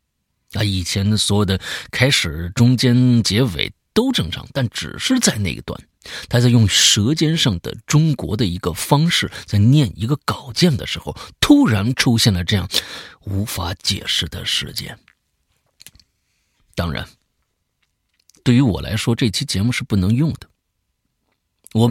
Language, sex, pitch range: Chinese, male, 90-125 Hz